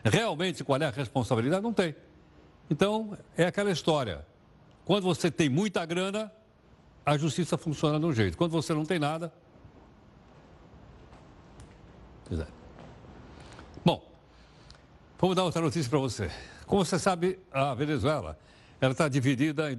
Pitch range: 125-180 Hz